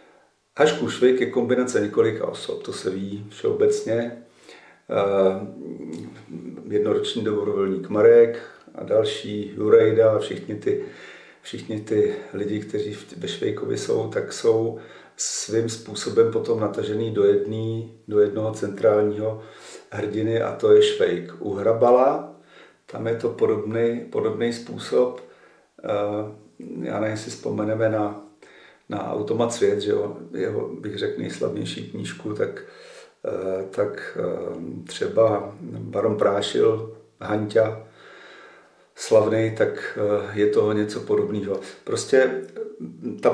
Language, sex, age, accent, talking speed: Czech, male, 50-69, native, 110 wpm